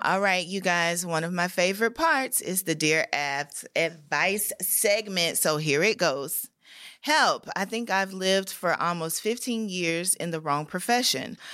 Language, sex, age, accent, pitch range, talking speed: English, female, 30-49, American, 165-210 Hz, 165 wpm